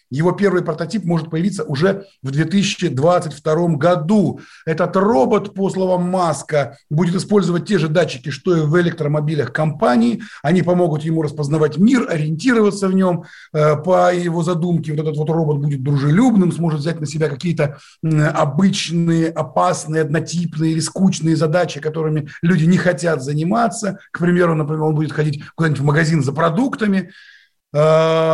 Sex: male